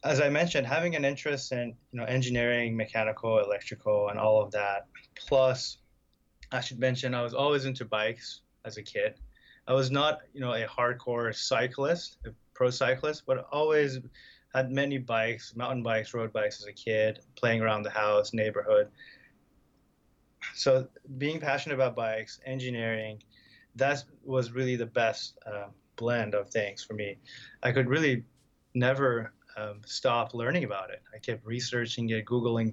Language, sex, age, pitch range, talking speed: English, male, 20-39, 110-130 Hz, 160 wpm